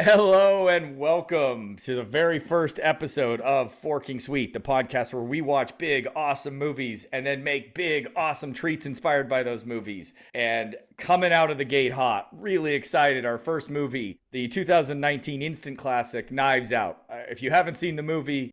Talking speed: 170 wpm